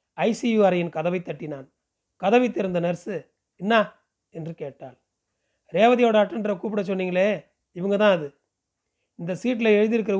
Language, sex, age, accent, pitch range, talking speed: Tamil, male, 40-59, native, 165-210 Hz, 120 wpm